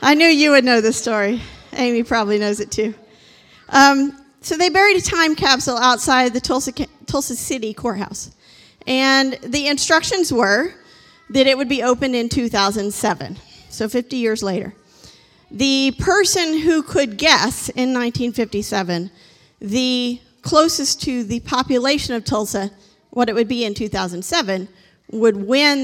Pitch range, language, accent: 220-285 Hz, English, American